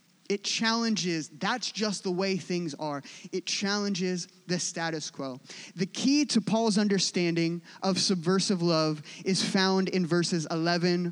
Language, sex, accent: English, male, American